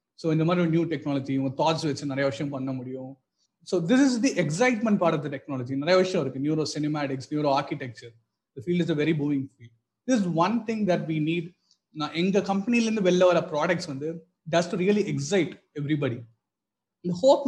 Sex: male